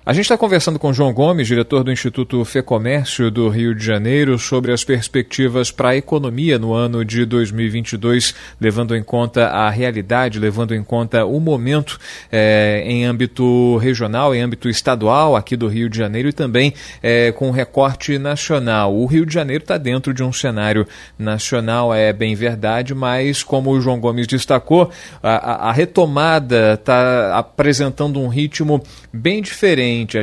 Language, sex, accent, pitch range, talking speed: Portuguese, male, Brazilian, 120-140 Hz, 170 wpm